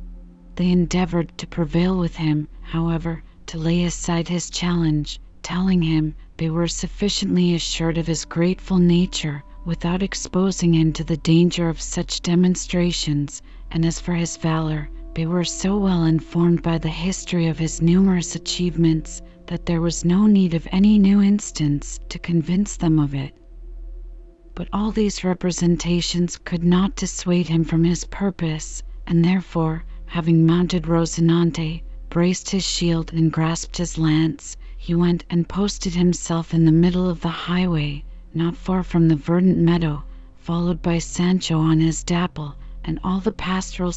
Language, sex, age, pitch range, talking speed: English, female, 40-59, 160-175 Hz, 155 wpm